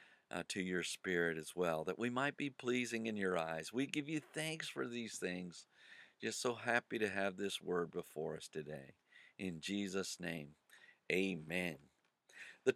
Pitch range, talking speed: 95-145 Hz, 170 wpm